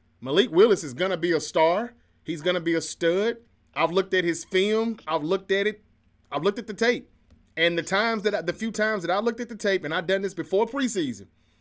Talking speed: 250 wpm